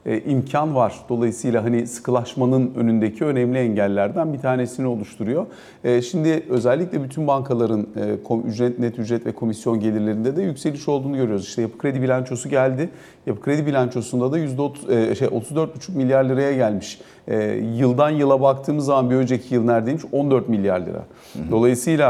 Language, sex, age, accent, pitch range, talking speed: Turkish, male, 50-69, native, 120-140 Hz, 145 wpm